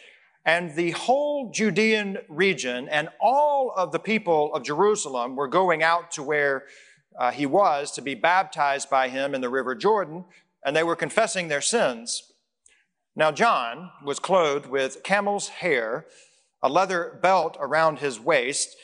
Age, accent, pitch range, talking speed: 40-59, American, 145-210 Hz, 155 wpm